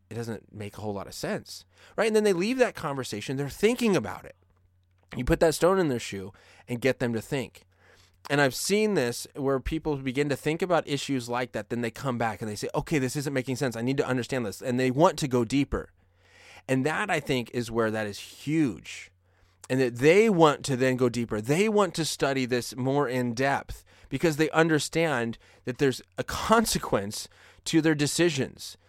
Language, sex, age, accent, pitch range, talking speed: English, male, 30-49, American, 110-160 Hz, 210 wpm